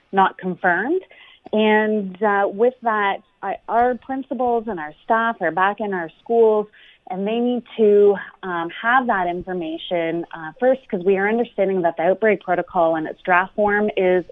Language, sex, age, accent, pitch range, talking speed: English, female, 30-49, American, 175-225 Hz, 165 wpm